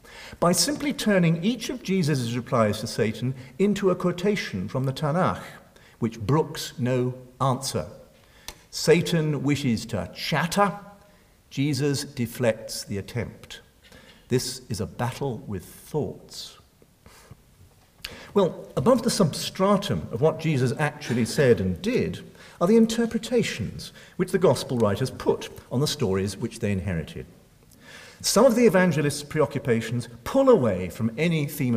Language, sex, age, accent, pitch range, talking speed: English, male, 50-69, British, 115-185 Hz, 130 wpm